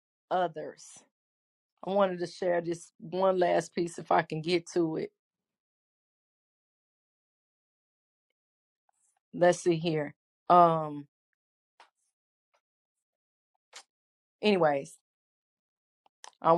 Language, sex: English, female